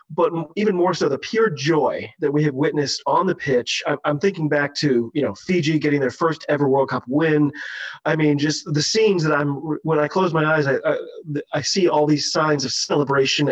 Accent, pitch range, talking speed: American, 145-170 Hz, 220 wpm